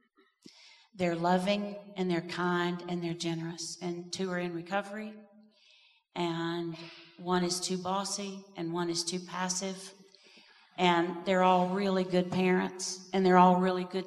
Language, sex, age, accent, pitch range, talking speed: English, female, 50-69, American, 175-195 Hz, 145 wpm